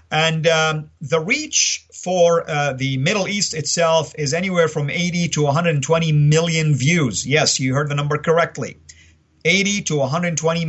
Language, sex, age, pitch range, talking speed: English, male, 50-69, 130-160 Hz, 150 wpm